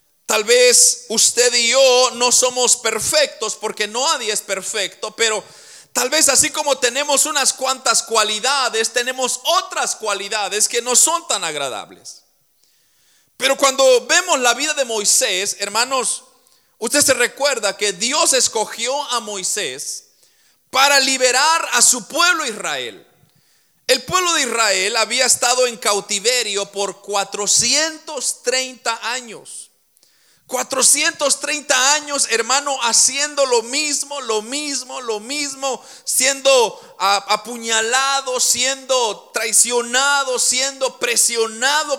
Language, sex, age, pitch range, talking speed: Spanish, male, 40-59, 220-285 Hz, 115 wpm